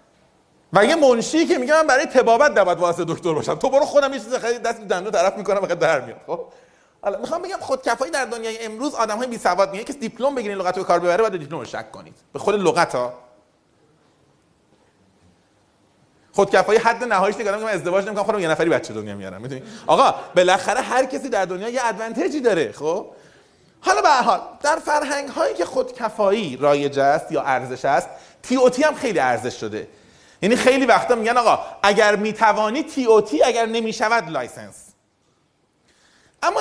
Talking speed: 175 wpm